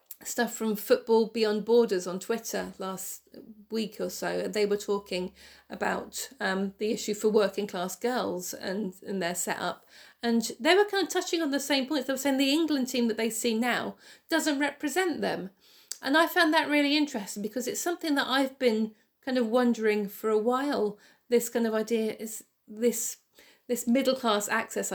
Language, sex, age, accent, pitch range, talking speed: English, female, 40-59, British, 215-270 Hz, 195 wpm